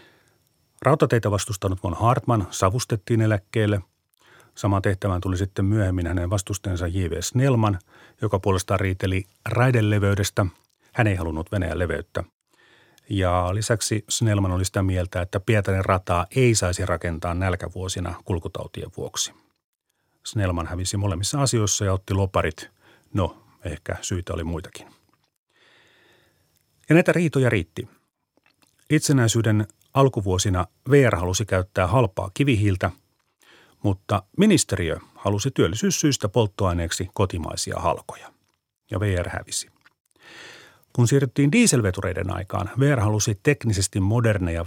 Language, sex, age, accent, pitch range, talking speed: Finnish, male, 40-59, native, 95-120 Hz, 105 wpm